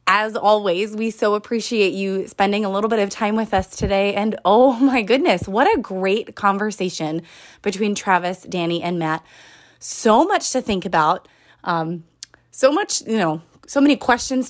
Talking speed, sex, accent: 170 wpm, female, American